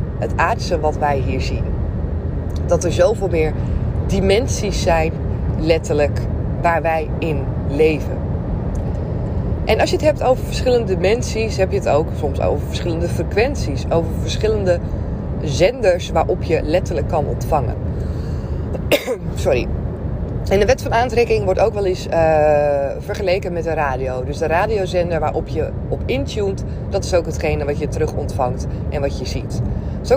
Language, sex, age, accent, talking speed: Dutch, female, 20-39, Dutch, 150 wpm